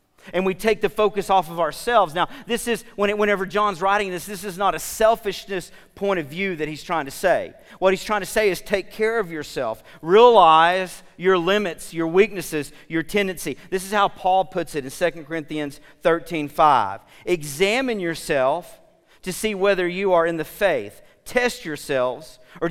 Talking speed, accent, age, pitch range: 180 wpm, American, 40-59, 165-210 Hz